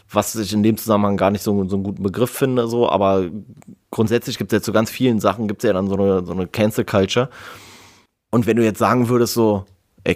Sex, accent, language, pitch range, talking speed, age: male, German, German, 100-120 Hz, 240 wpm, 30-49